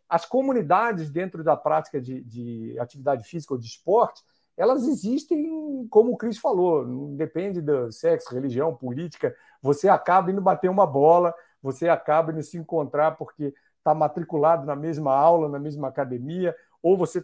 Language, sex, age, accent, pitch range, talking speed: Portuguese, male, 50-69, Brazilian, 155-220 Hz, 160 wpm